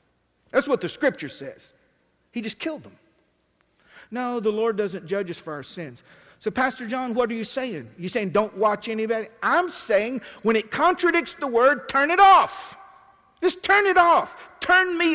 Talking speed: 180 wpm